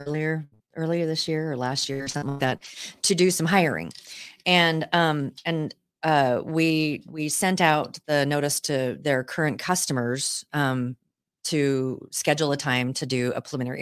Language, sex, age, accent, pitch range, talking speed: English, female, 40-59, American, 130-170 Hz, 165 wpm